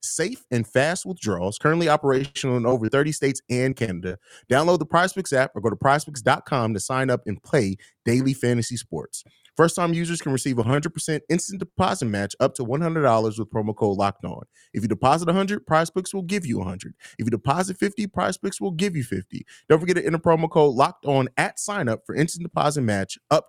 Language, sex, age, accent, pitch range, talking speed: English, male, 30-49, American, 120-165 Hz, 195 wpm